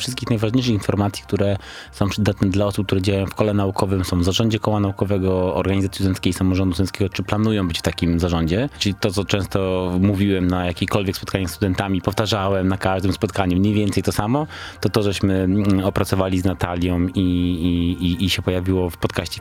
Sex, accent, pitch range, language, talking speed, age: male, native, 90-105 Hz, Polish, 180 wpm, 20-39